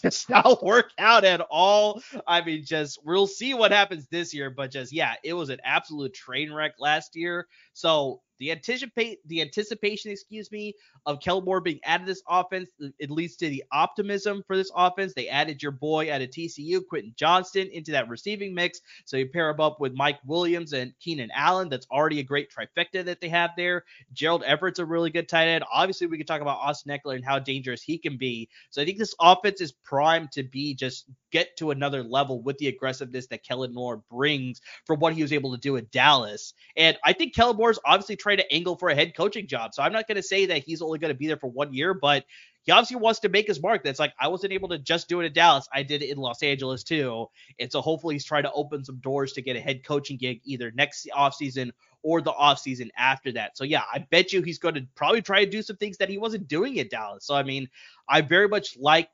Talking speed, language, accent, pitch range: 240 wpm, English, American, 135-185 Hz